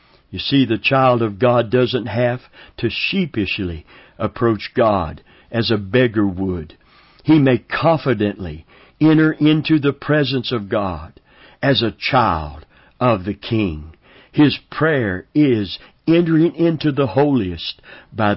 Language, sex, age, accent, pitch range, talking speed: English, male, 60-79, American, 100-130 Hz, 125 wpm